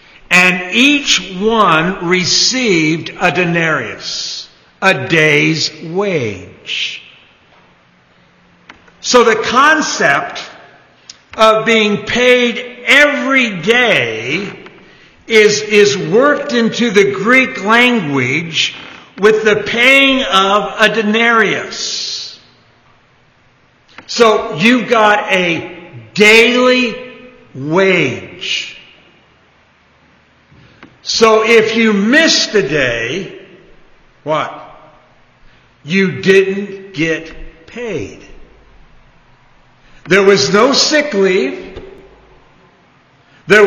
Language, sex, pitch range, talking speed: English, male, 170-230 Hz, 75 wpm